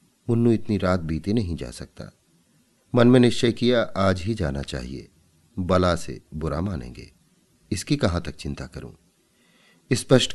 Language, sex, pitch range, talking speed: Hindi, male, 80-105 Hz, 145 wpm